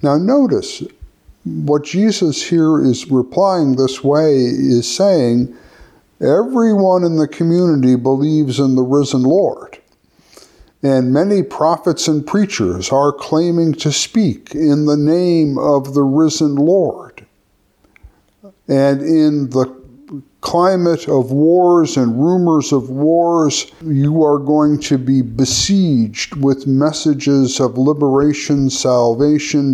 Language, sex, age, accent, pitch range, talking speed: English, male, 50-69, American, 130-155 Hz, 115 wpm